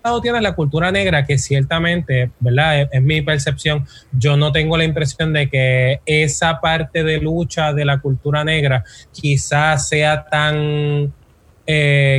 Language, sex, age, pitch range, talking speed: Spanish, male, 20-39, 140-165 Hz, 150 wpm